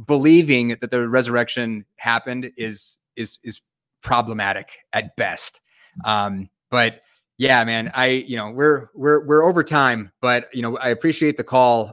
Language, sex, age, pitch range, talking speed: English, male, 30-49, 105-125 Hz, 150 wpm